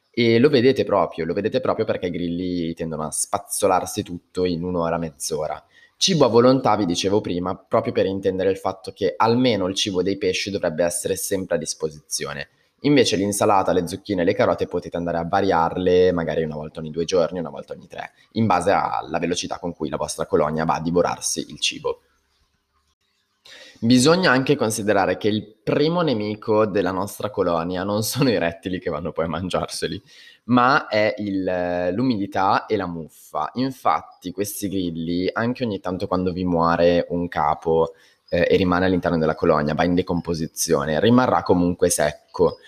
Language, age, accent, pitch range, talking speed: Italian, 20-39, native, 85-115 Hz, 170 wpm